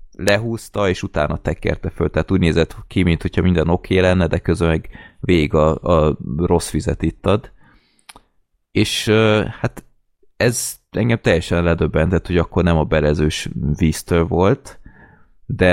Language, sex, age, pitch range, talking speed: Hungarian, male, 20-39, 80-95 Hz, 145 wpm